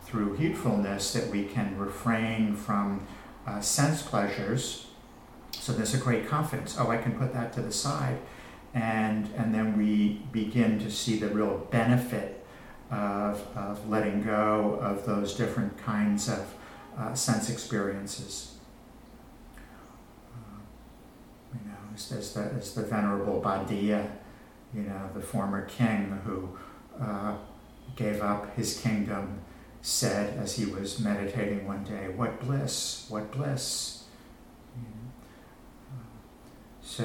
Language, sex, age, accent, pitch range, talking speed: English, male, 50-69, American, 100-115 Hz, 130 wpm